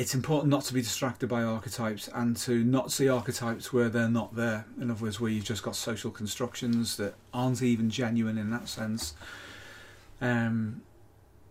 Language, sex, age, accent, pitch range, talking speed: English, male, 30-49, British, 115-125 Hz, 175 wpm